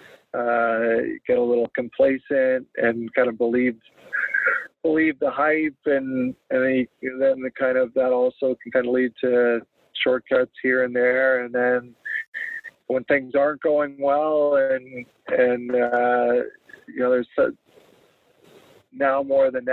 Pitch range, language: 125-135 Hz, English